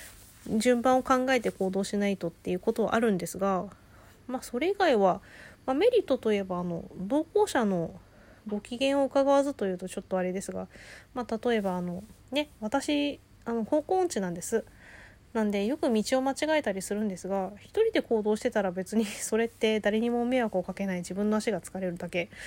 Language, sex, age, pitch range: Japanese, female, 20-39, 190-255 Hz